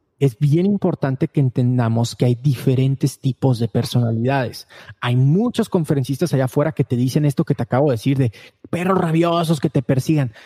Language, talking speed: Spanish, 180 wpm